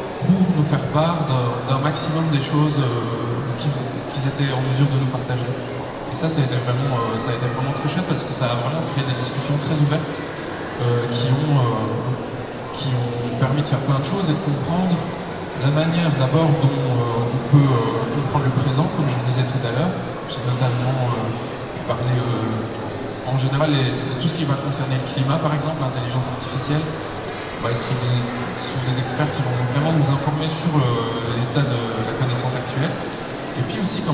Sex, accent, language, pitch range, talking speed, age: male, French, French, 125-150 Hz, 200 wpm, 20-39